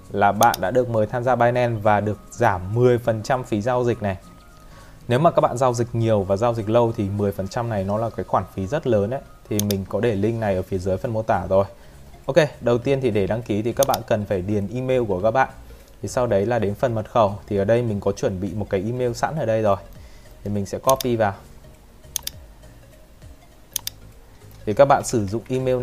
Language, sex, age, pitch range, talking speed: Vietnamese, male, 20-39, 100-125 Hz, 235 wpm